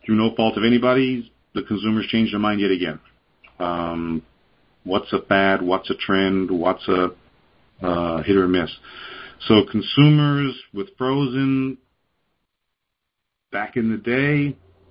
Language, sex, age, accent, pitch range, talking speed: English, male, 50-69, American, 90-110 Hz, 135 wpm